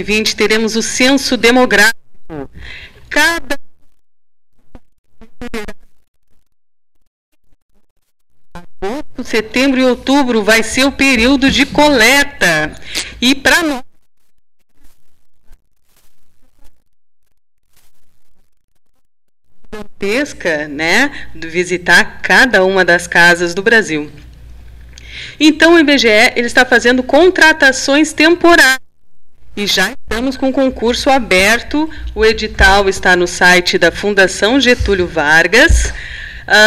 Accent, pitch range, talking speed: Brazilian, 205-275 Hz, 85 wpm